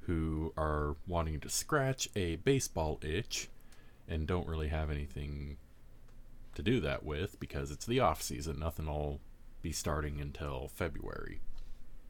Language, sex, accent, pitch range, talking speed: English, male, American, 75-95 Hz, 140 wpm